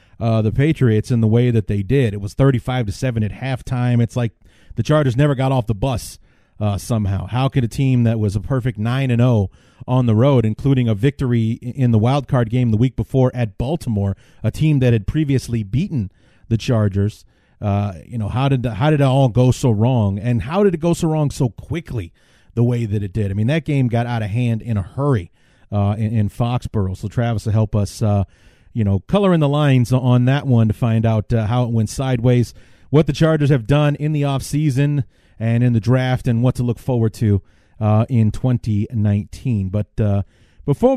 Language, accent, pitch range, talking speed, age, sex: English, American, 110-135 Hz, 220 wpm, 40-59, male